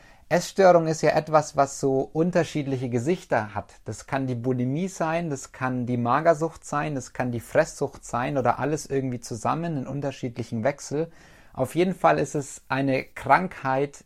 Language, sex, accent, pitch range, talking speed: German, male, German, 125-155 Hz, 160 wpm